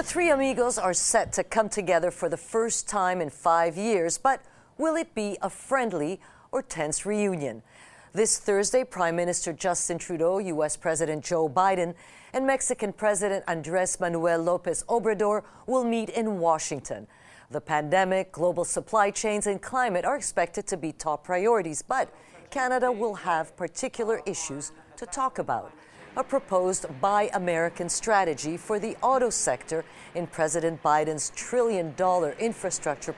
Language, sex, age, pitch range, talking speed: English, female, 50-69, 170-225 Hz, 145 wpm